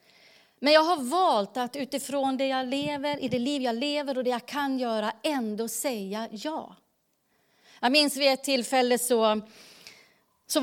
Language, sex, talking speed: Swedish, female, 165 wpm